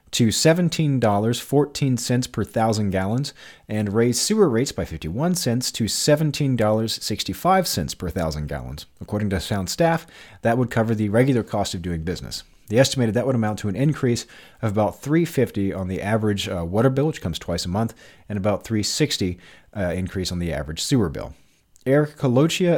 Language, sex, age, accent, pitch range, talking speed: English, male, 40-59, American, 95-125 Hz, 170 wpm